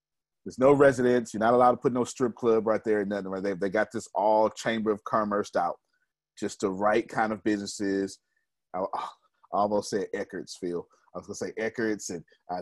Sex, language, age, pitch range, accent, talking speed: male, English, 30-49, 105-145 Hz, American, 210 wpm